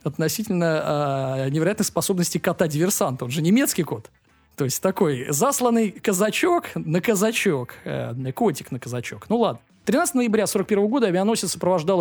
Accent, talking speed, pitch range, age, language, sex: native, 140 wpm, 140-205 Hz, 20-39, Russian, male